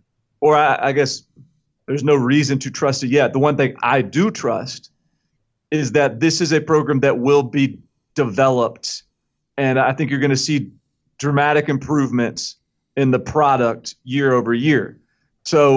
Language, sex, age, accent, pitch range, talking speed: English, male, 30-49, American, 130-150 Hz, 165 wpm